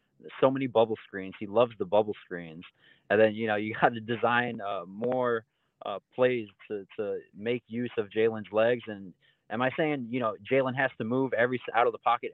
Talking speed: 205 wpm